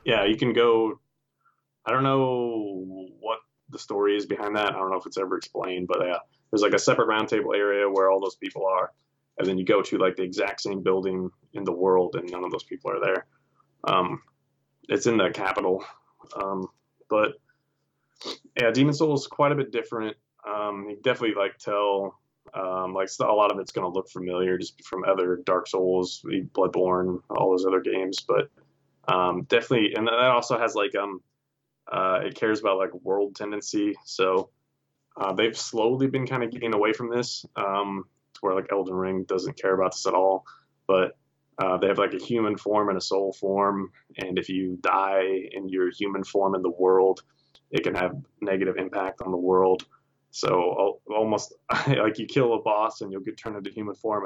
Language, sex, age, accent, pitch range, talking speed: English, male, 20-39, American, 95-115 Hz, 195 wpm